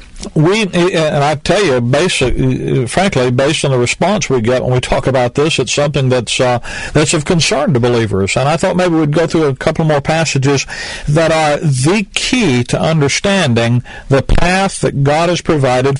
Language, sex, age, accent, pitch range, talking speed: English, male, 50-69, American, 130-165 Hz, 180 wpm